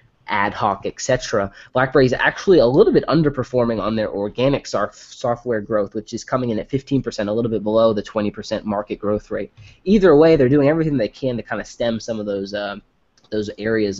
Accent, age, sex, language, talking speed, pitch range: American, 20-39, male, English, 205 wpm, 105-130 Hz